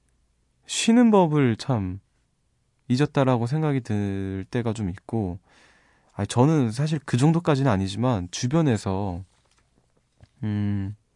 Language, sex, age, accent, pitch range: Korean, male, 20-39, native, 100-135 Hz